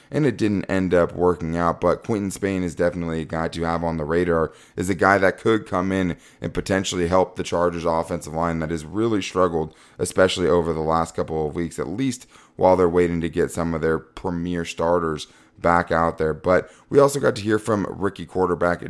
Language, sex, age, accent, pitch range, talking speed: English, male, 20-39, American, 85-95 Hz, 215 wpm